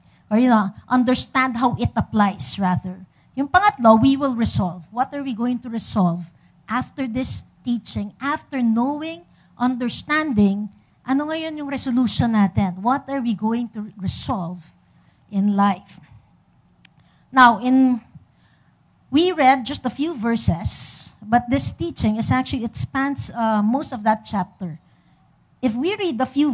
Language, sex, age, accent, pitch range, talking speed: English, female, 50-69, Filipino, 200-255 Hz, 140 wpm